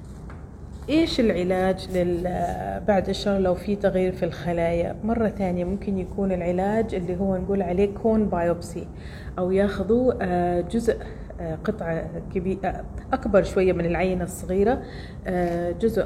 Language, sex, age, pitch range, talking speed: Arabic, female, 30-49, 180-215 Hz, 110 wpm